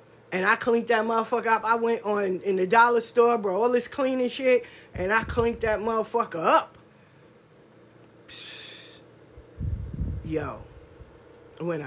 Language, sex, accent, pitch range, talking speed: English, female, American, 145-215 Hz, 135 wpm